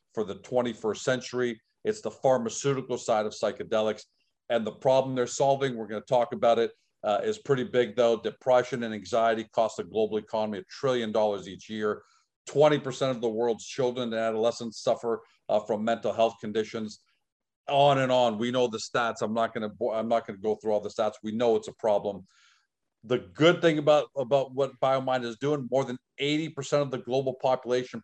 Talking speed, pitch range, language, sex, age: 195 wpm, 110-130 Hz, English, male, 50-69